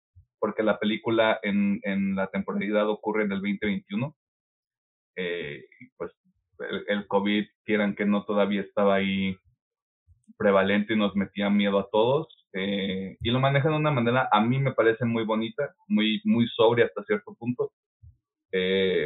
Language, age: Spanish, 30-49